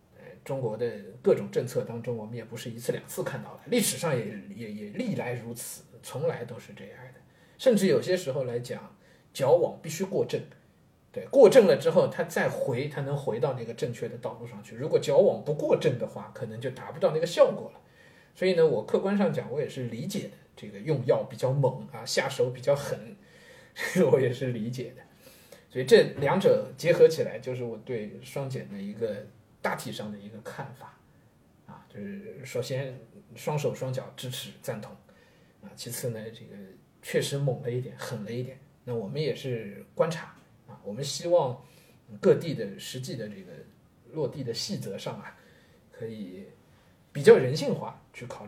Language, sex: Chinese, male